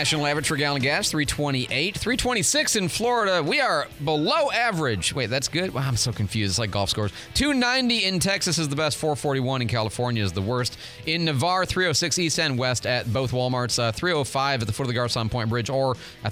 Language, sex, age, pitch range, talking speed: English, male, 30-49, 110-150 Hz, 215 wpm